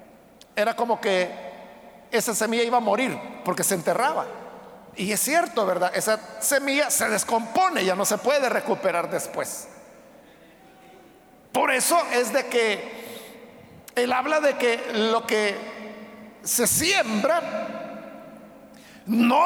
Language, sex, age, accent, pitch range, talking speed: Spanish, male, 50-69, Mexican, 215-290 Hz, 120 wpm